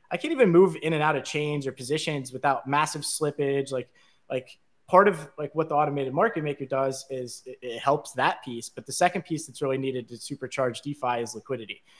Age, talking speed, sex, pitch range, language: 20-39, 215 wpm, male, 125-160 Hz, English